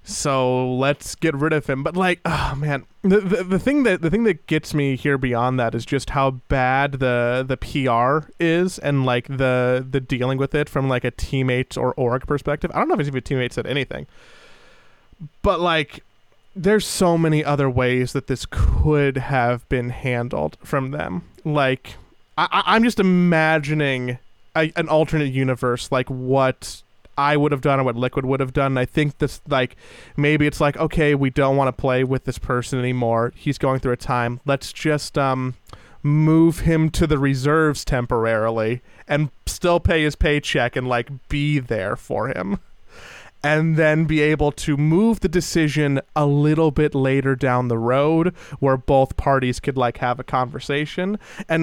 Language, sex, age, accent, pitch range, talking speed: English, male, 20-39, American, 130-160 Hz, 180 wpm